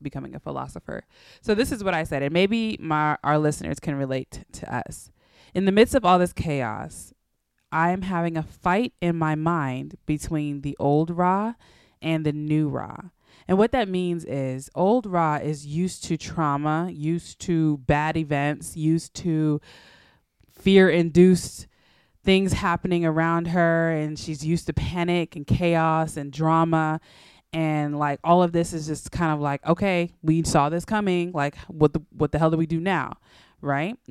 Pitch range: 145-170 Hz